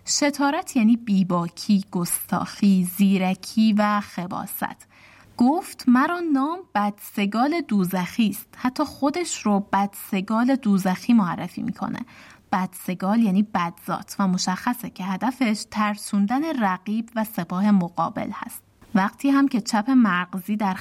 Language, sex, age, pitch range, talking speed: Persian, female, 20-39, 195-255 Hz, 110 wpm